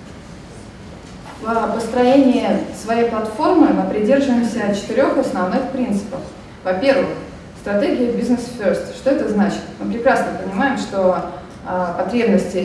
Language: Russian